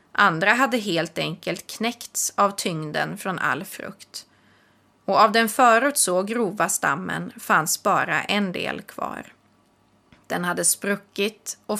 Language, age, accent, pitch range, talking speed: Swedish, 30-49, native, 185-235 Hz, 125 wpm